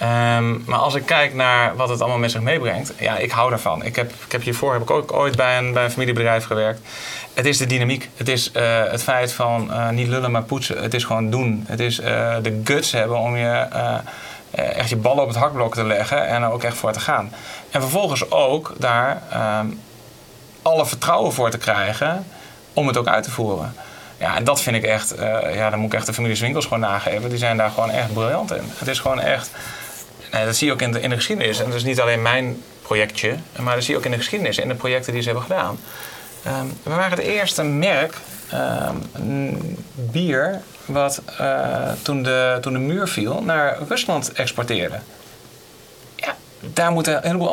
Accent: Dutch